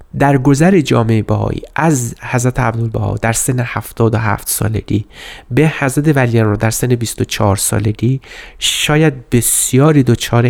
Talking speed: 120 wpm